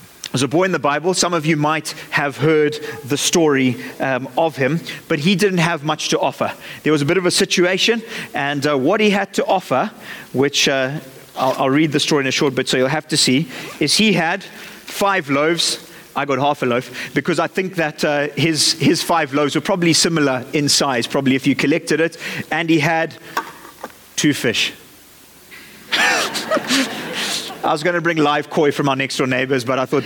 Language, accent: English, British